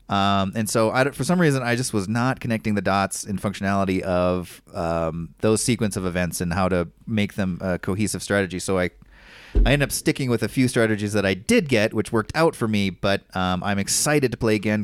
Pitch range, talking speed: 95-130 Hz, 225 wpm